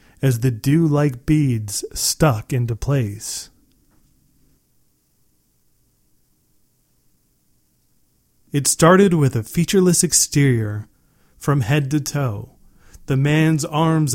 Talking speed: 90 wpm